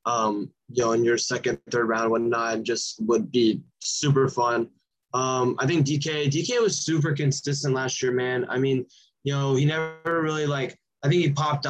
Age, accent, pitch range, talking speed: 20-39, American, 120-135 Hz, 190 wpm